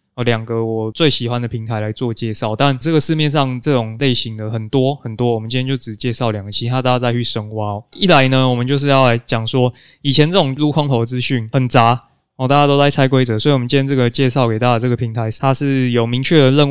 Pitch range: 115-140 Hz